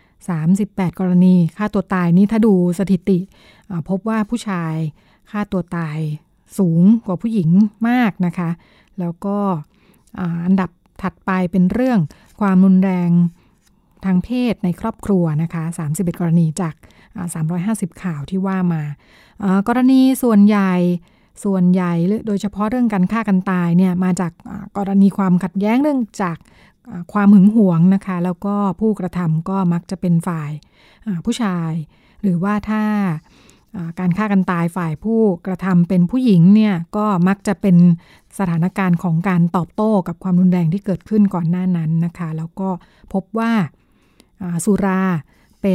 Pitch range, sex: 175-205 Hz, female